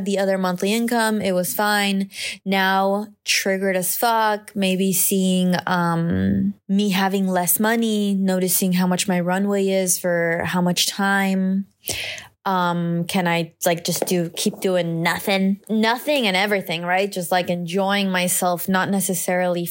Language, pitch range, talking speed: English, 175-205 Hz, 145 wpm